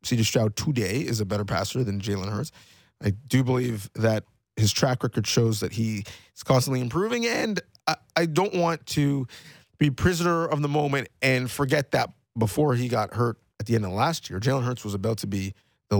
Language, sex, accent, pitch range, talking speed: English, male, American, 105-130 Hz, 205 wpm